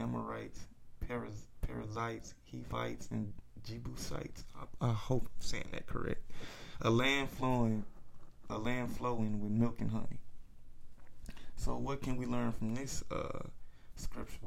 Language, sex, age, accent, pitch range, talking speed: English, male, 20-39, American, 110-120 Hz, 135 wpm